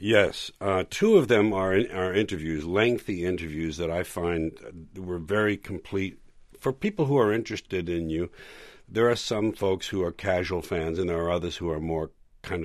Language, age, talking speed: English, 60-79, 190 wpm